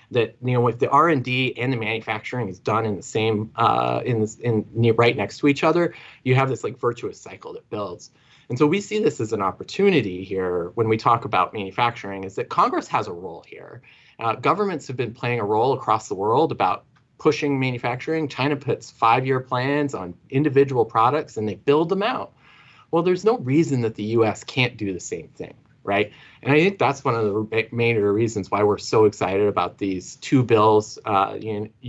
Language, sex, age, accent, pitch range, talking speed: English, male, 30-49, American, 105-145 Hz, 210 wpm